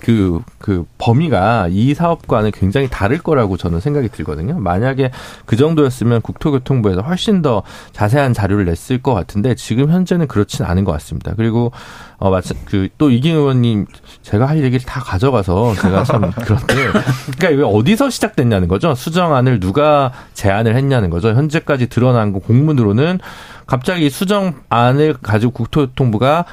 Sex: male